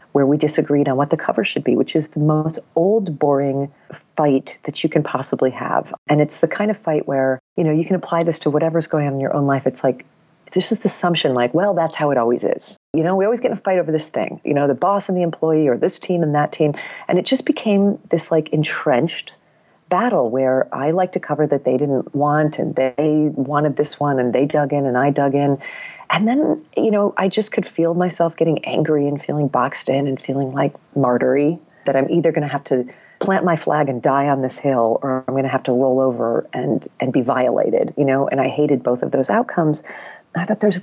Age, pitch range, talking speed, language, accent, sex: 40-59, 140-185 Hz, 245 wpm, English, American, female